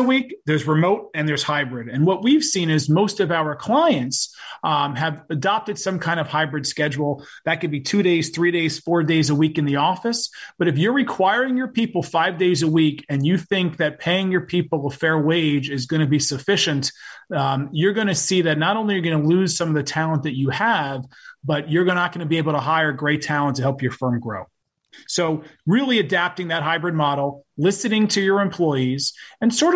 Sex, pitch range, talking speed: male, 150-195 Hz, 225 wpm